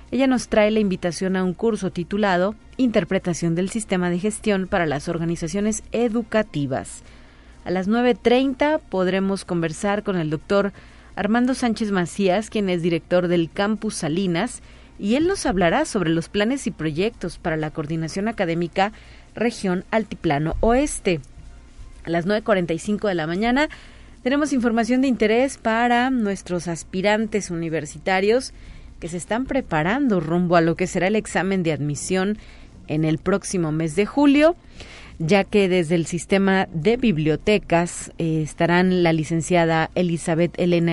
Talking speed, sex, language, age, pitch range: 140 wpm, female, Spanish, 40-59, 170-220 Hz